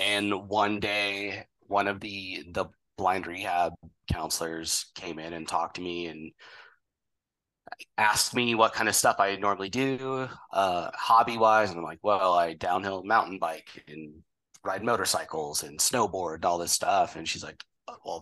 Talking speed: 160 wpm